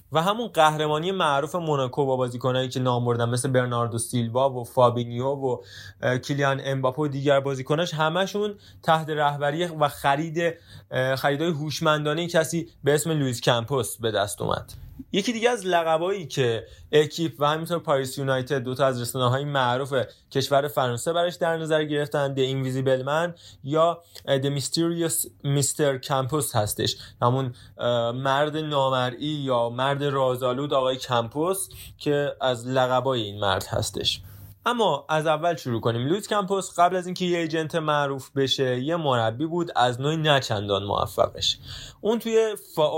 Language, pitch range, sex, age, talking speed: Persian, 125-155 Hz, male, 20-39, 135 wpm